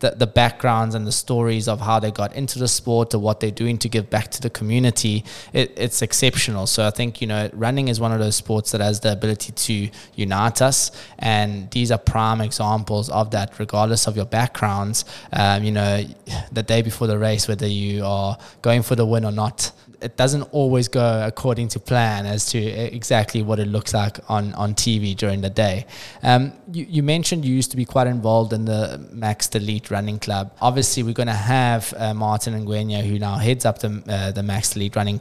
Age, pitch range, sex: 20-39, 105-120 Hz, male